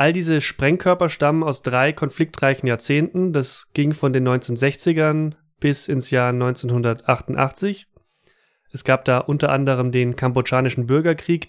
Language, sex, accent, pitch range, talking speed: German, male, German, 125-155 Hz, 130 wpm